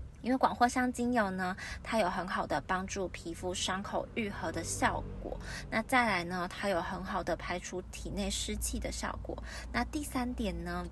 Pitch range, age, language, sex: 175-215 Hz, 20-39, Chinese, female